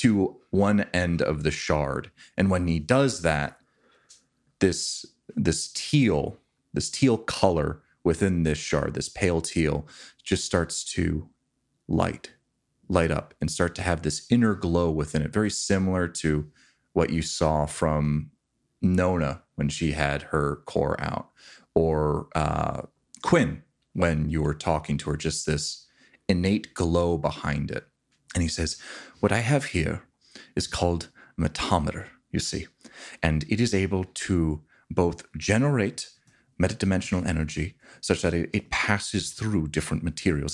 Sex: male